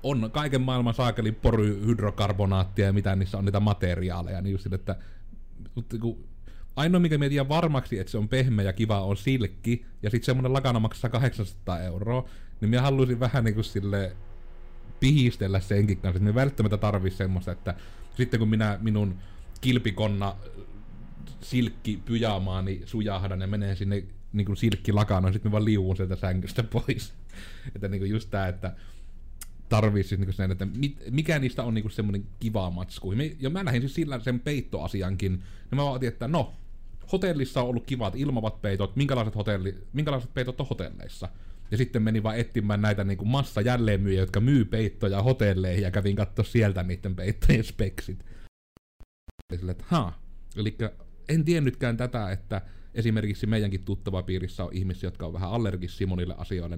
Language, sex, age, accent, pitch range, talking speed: Finnish, male, 30-49, native, 95-120 Hz, 155 wpm